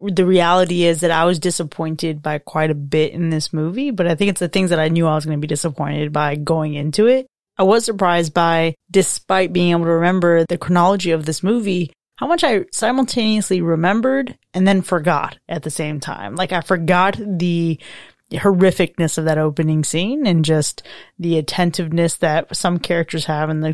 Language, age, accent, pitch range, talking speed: English, 20-39, American, 160-190 Hz, 195 wpm